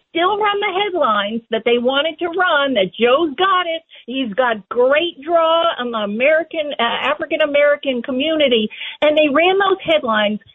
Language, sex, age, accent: English, female, 50-69, American